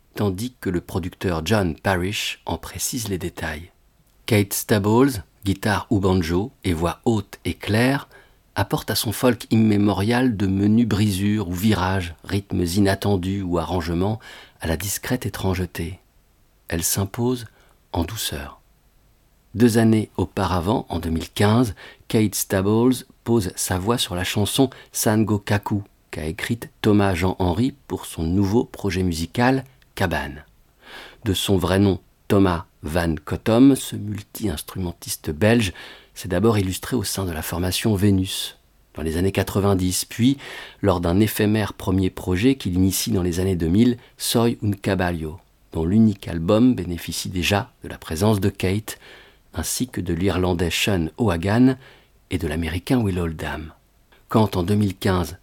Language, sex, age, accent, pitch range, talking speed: French, male, 50-69, French, 90-110 Hz, 140 wpm